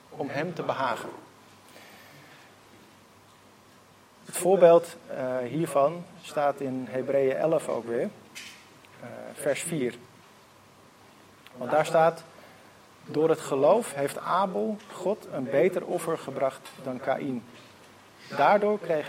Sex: male